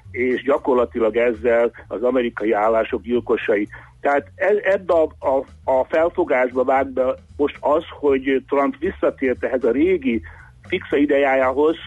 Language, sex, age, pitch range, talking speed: Hungarian, male, 60-79, 125-150 Hz, 120 wpm